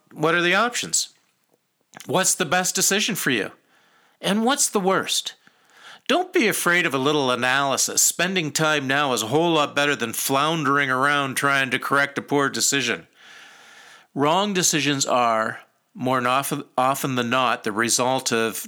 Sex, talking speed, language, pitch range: male, 155 wpm, English, 130-170 Hz